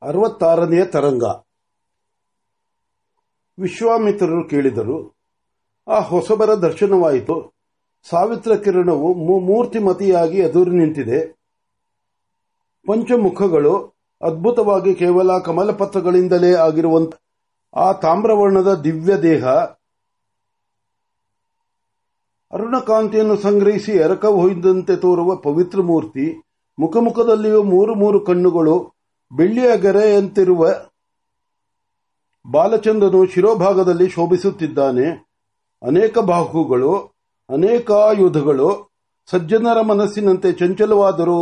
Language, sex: Marathi, male